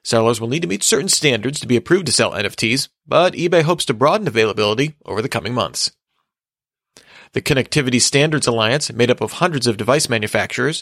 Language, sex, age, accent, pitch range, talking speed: English, male, 30-49, American, 115-150 Hz, 190 wpm